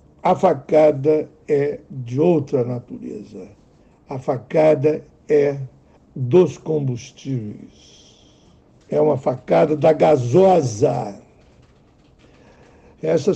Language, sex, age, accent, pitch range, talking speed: Portuguese, male, 60-79, Brazilian, 130-180 Hz, 75 wpm